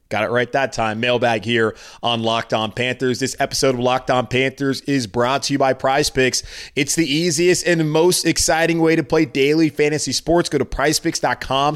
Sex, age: male, 20-39